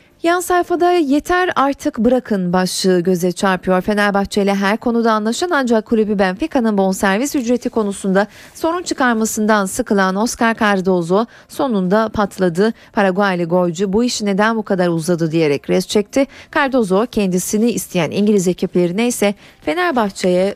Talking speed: 130 wpm